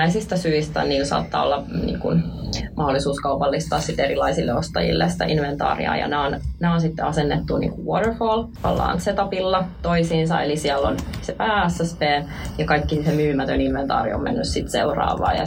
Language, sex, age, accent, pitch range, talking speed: Finnish, female, 20-39, native, 140-165 Hz, 150 wpm